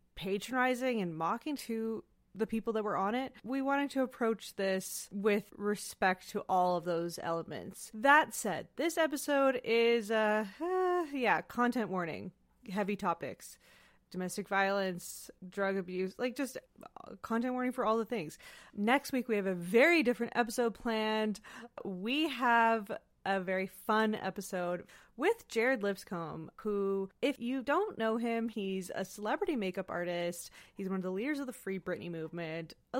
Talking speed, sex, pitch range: 155 wpm, female, 190-270 Hz